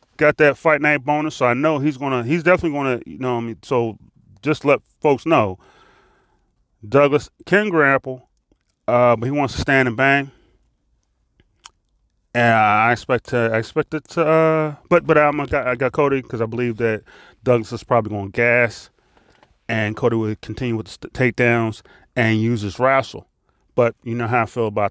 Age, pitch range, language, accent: 30-49, 115-175 Hz, English, American